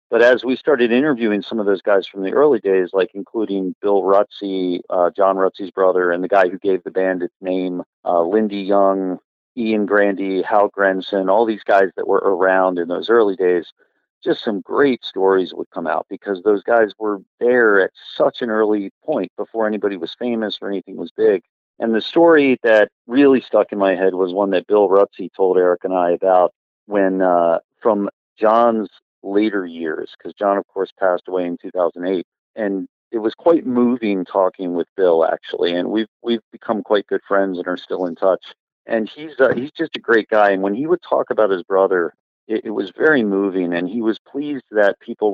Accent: American